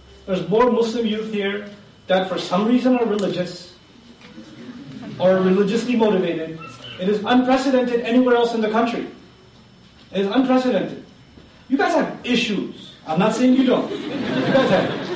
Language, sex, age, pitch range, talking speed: English, male, 30-49, 205-250 Hz, 145 wpm